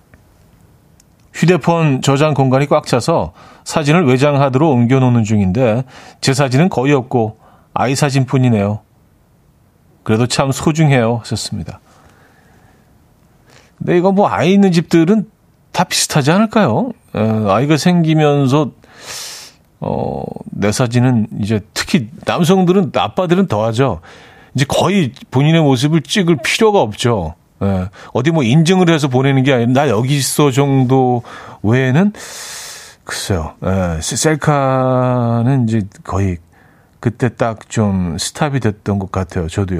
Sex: male